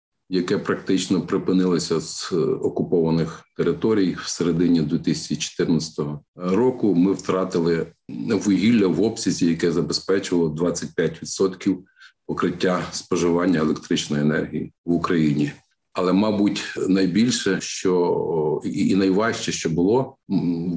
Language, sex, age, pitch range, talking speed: Ukrainian, male, 50-69, 80-95 Hz, 95 wpm